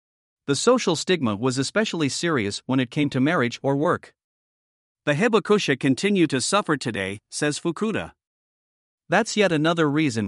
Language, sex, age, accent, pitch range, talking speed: English, male, 50-69, American, 135-175 Hz, 145 wpm